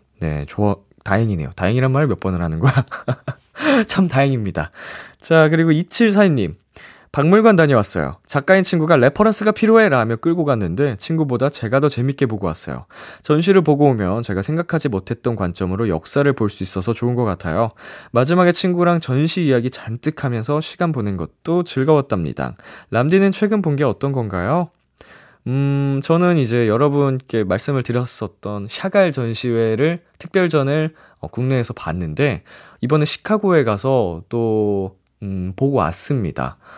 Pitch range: 100-155 Hz